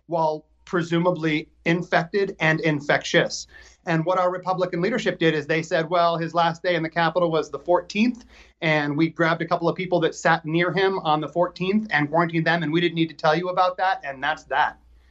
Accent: American